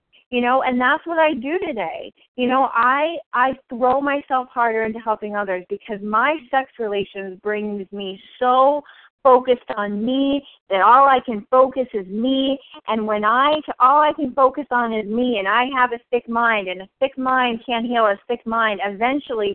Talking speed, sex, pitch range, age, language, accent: 185 wpm, female, 200-255 Hz, 40-59, English, American